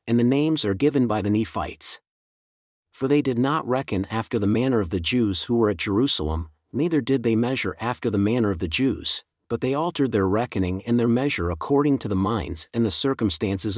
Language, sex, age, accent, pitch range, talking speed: English, male, 40-59, American, 95-130 Hz, 210 wpm